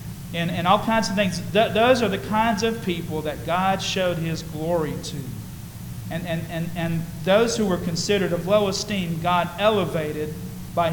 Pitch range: 165-205 Hz